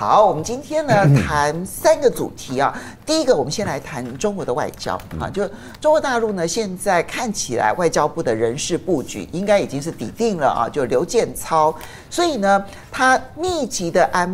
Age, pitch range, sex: 50-69, 140-220 Hz, male